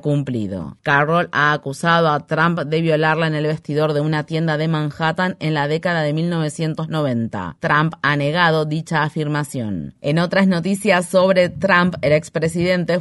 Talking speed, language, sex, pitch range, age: 150 wpm, Spanish, female, 150-175 Hz, 30-49